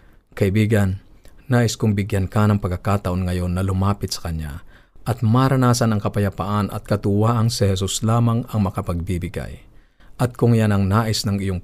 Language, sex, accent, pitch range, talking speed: Filipino, male, native, 95-115 Hz, 155 wpm